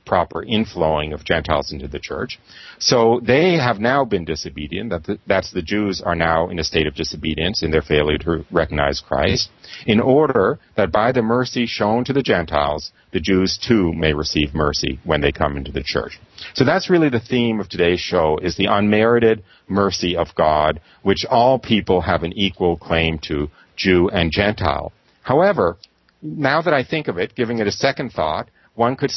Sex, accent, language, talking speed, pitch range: male, American, English, 185 wpm, 80-105 Hz